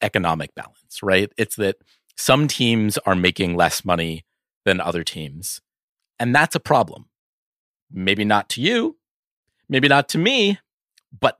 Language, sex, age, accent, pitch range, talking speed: English, male, 30-49, American, 95-130 Hz, 140 wpm